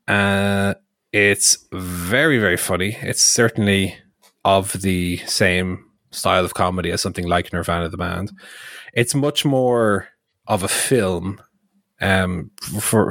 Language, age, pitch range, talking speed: English, 30-49, 95-120 Hz, 125 wpm